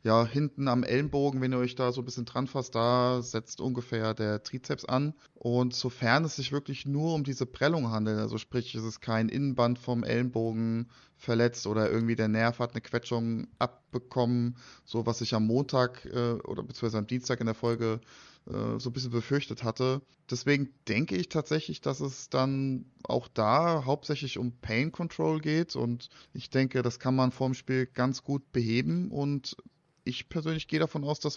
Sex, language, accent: male, German, German